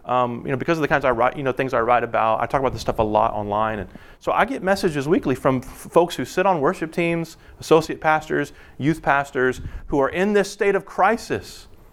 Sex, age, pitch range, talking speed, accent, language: male, 30-49, 130-185 Hz, 240 wpm, American, English